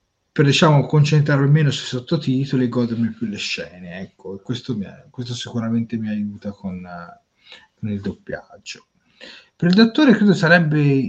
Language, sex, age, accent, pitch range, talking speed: Italian, male, 30-49, native, 105-165 Hz, 150 wpm